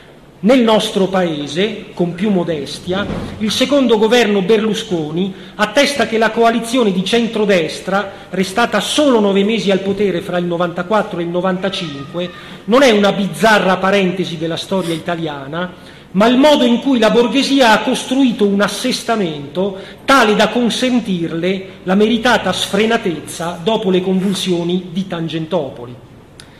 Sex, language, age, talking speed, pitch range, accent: male, Italian, 40-59, 130 wpm, 175-220 Hz, native